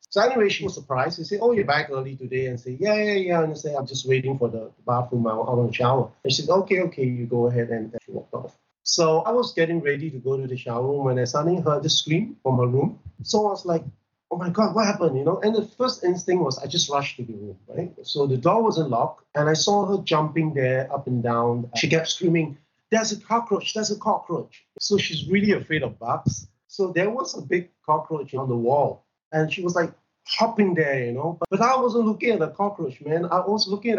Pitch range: 130-185 Hz